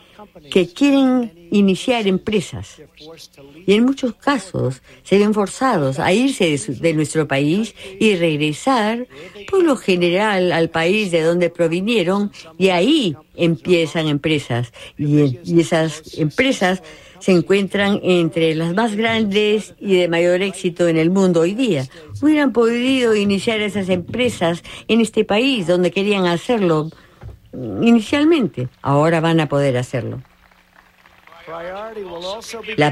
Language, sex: English, female